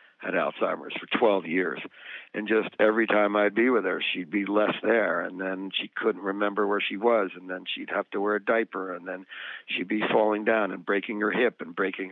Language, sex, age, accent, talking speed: English, male, 50-69, American, 225 wpm